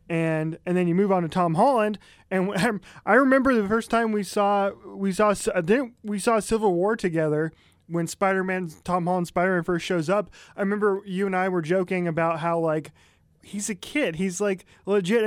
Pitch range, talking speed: 155-205 Hz, 190 wpm